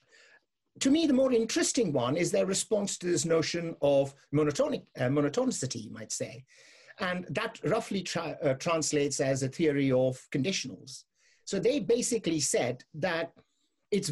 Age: 50-69